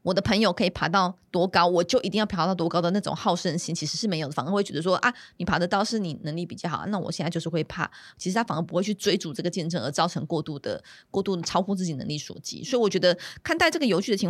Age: 20-39